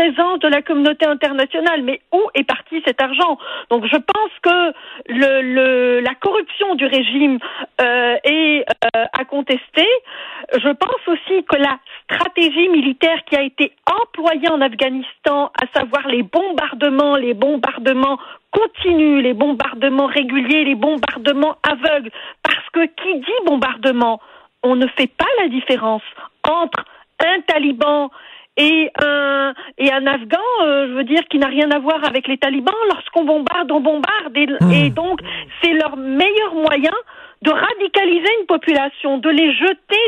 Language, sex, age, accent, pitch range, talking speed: French, female, 50-69, French, 265-335 Hz, 150 wpm